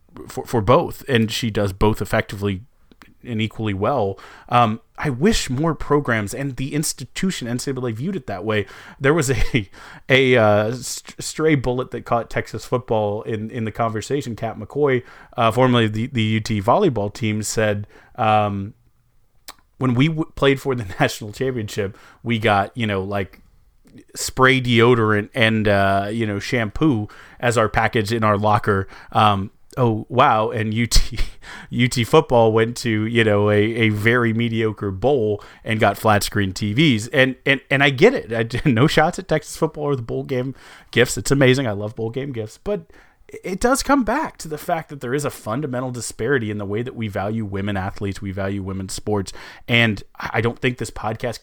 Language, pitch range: English, 105-130 Hz